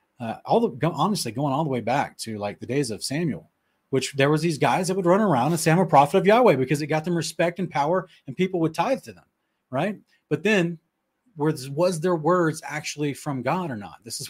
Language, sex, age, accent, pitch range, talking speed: English, male, 30-49, American, 125-165 Hz, 245 wpm